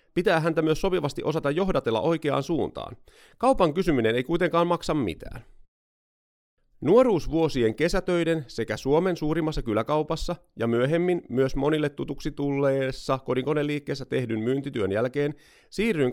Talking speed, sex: 115 wpm, male